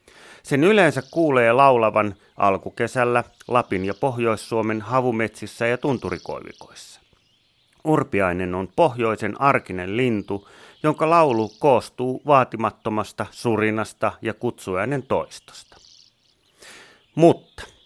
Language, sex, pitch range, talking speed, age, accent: Finnish, male, 100-130 Hz, 85 wpm, 40-59, native